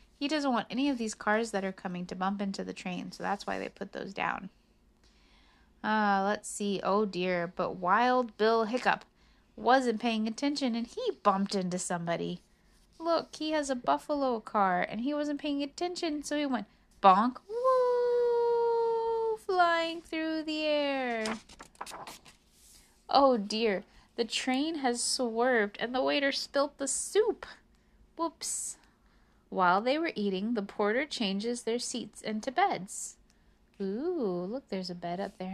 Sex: female